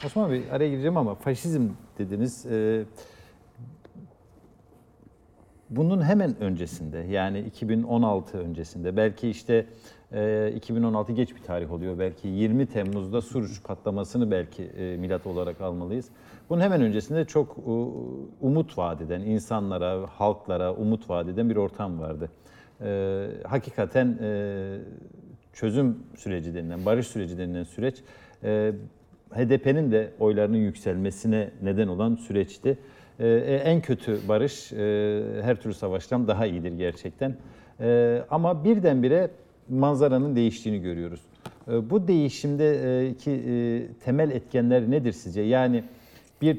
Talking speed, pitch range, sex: 110 wpm, 100-130 Hz, male